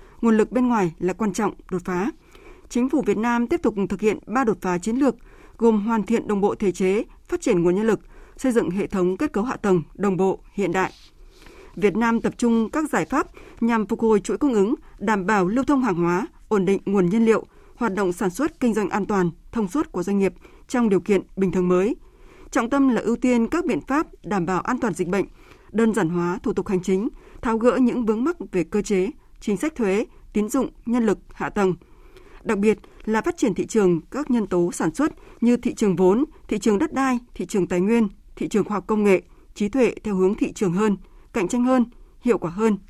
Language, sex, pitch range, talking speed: Vietnamese, female, 195-255 Hz, 240 wpm